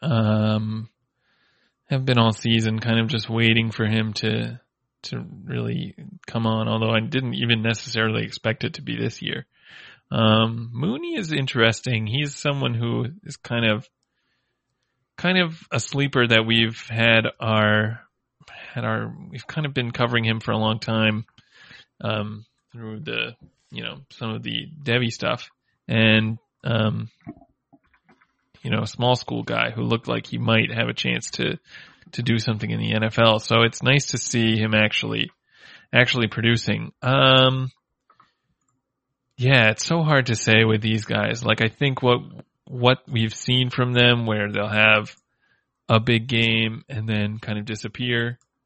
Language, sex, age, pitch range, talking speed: English, male, 20-39, 110-130 Hz, 160 wpm